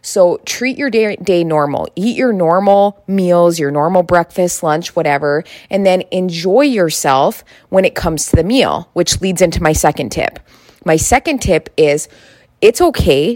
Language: English